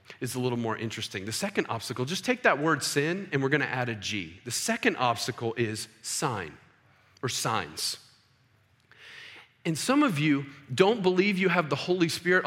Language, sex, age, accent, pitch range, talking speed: English, male, 40-59, American, 125-185 Hz, 180 wpm